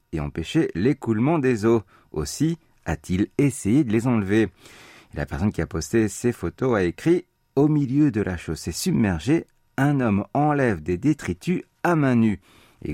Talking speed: 170 wpm